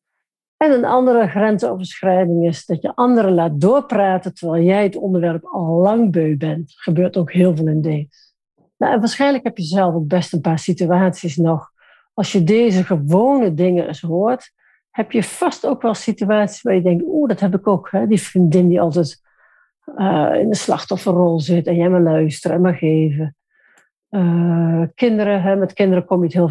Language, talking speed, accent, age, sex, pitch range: Dutch, 180 wpm, Dutch, 60-79, female, 170-235 Hz